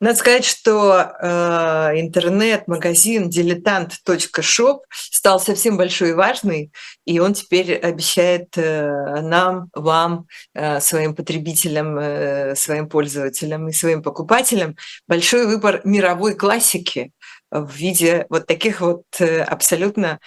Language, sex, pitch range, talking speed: Russian, female, 155-185 Hz, 115 wpm